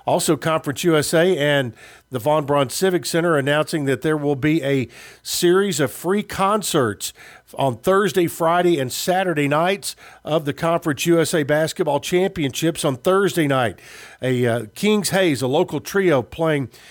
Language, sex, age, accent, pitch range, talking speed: English, male, 50-69, American, 140-175 Hz, 150 wpm